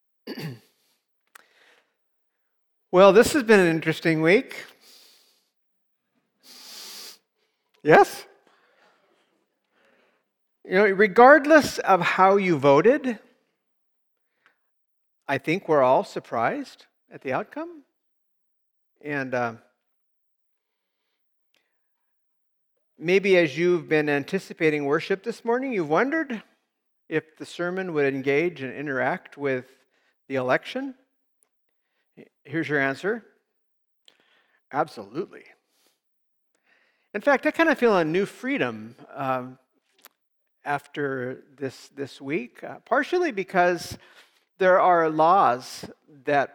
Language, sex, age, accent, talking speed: English, male, 50-69, American, 90 wpm